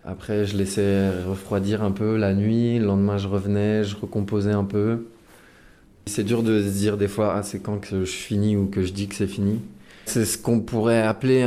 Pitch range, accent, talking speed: 95-110 Hz, French, 215 wpm